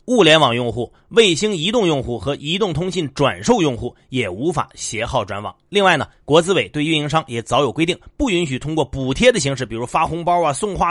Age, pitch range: 30-49, 135-190 Hz